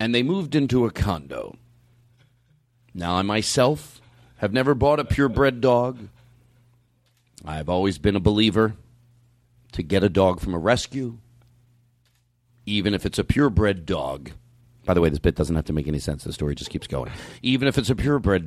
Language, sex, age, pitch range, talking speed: English, male, 40-59, 110-125 Hz, 175 wpm